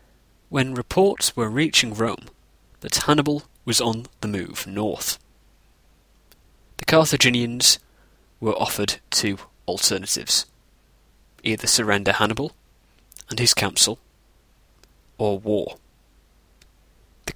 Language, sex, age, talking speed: English, male, 20-39, 95 wpm